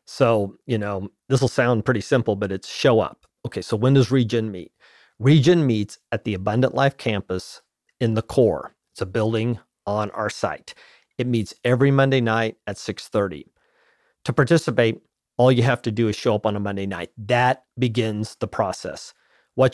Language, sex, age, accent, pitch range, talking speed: English, male, 40-59, American, 110-130 Hz, 180 wpm